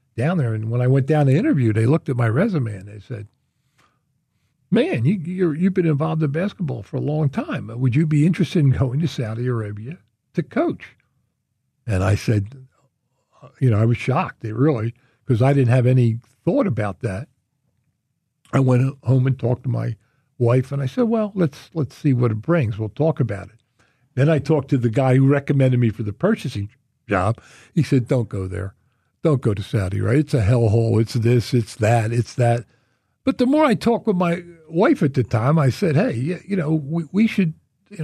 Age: 60-79